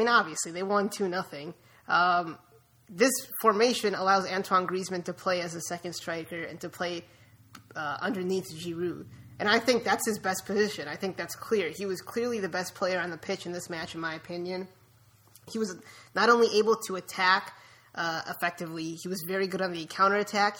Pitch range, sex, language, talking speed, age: 170-205 Hz, female, English, 190 wpm, 20-39